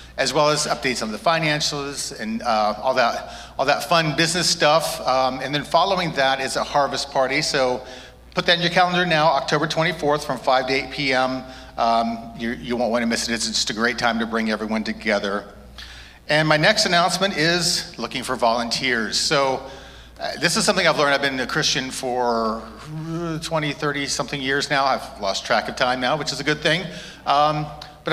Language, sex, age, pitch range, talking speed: English, male, 40-59, 125-160 Hz, 200 wpm